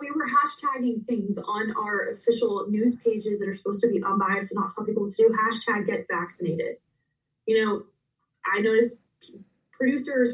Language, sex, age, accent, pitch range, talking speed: English, female, 20-39, American, 190-230 Hz, 175 wpm